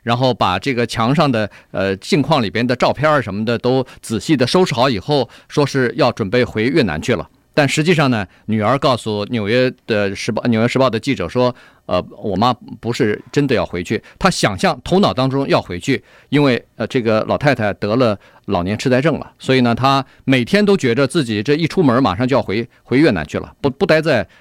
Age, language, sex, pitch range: 50-69, Chinese, male, 115-150 Hz